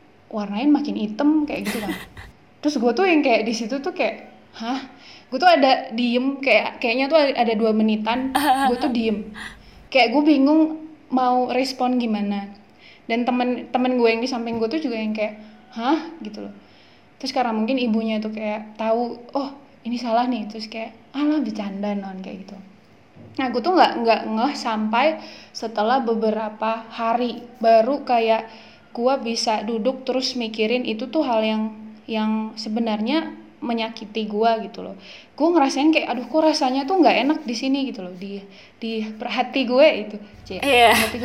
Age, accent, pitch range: 10-29, native, 220-275 Hz